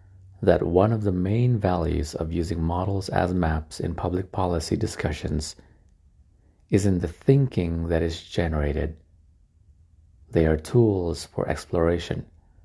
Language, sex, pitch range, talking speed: English, male, 80-100 Hz, 130 wpm